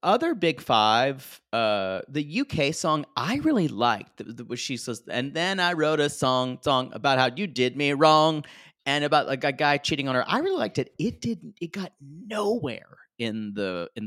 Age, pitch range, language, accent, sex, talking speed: 30-49, 130-195 Hz, English, American, male, 195 wpm